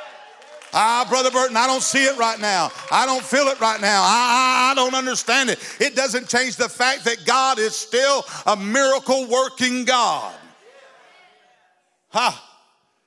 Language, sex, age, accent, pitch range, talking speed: English, male, 50-69, American, 230-260 Hz, 160 wpm